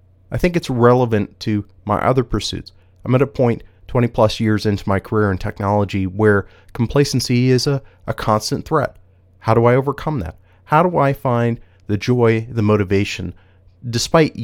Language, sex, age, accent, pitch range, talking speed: English, male, 30-49, American, 95-125 Hz, 170 wpm